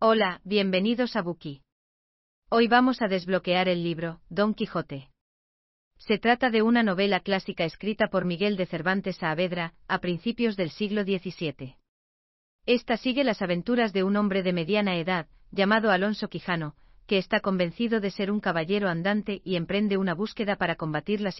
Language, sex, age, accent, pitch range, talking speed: German, female, 40-59, Spanish, 170-210 Hz, 160 wpm